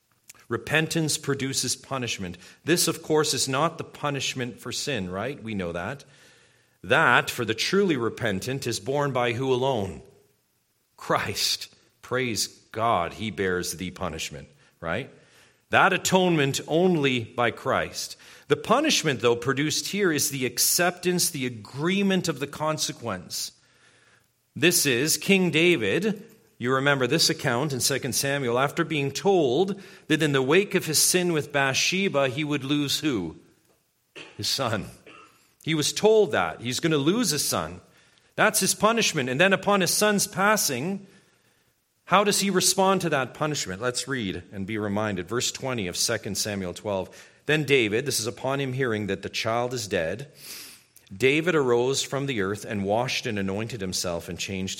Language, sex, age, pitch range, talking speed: English, male, 40-59, 115-165 Hz, 155 wpm